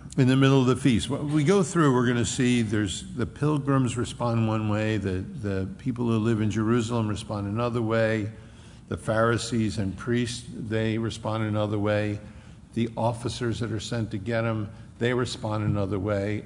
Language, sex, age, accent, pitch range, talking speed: English, male, 60-79, American, 105-125 Hz, 180 wpm